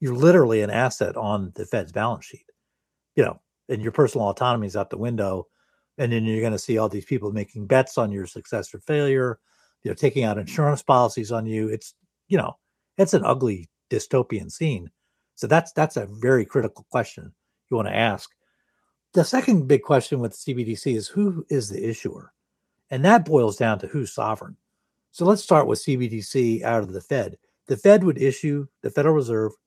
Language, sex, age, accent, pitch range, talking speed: English, male, 50-69, American, 110-145 Hz, 190 wpm